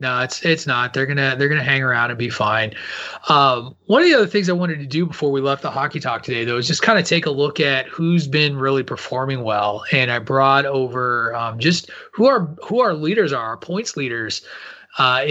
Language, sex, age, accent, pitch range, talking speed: English, male, 30-49, American, 120-150 Hz, 235 wpm